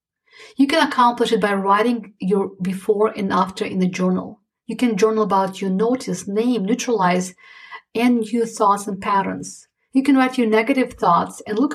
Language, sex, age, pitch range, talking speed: English, female, 50-69, 205-245 Hz, 175 wpm